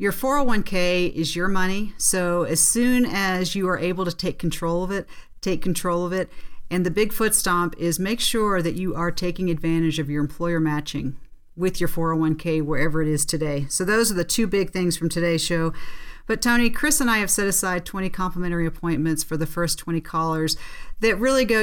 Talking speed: 205 wpm